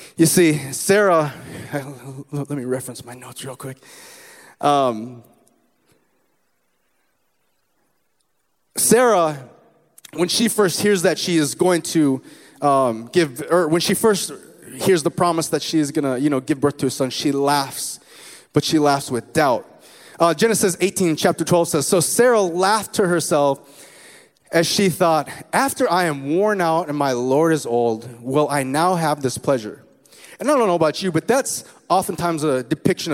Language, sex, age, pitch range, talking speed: English, male, 30-49, 145-175 Hz, 165 wpm